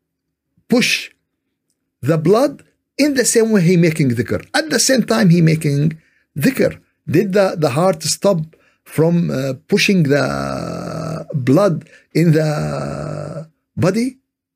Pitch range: 120-190 Hz